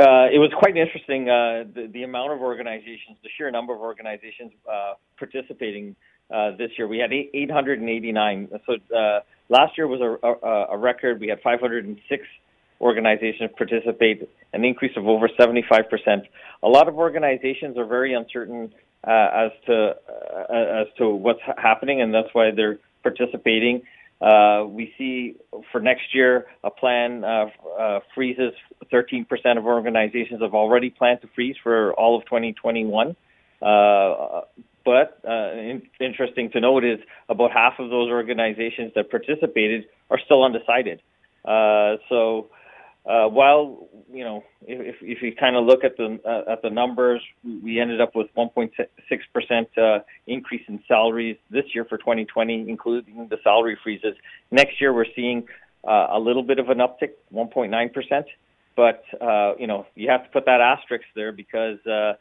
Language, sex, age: English, male, 40-59